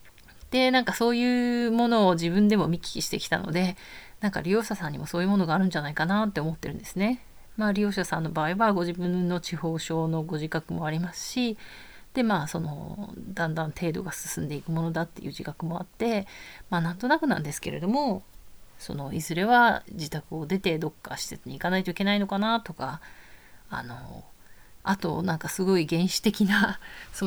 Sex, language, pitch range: female, Japanese, 160-205 Hz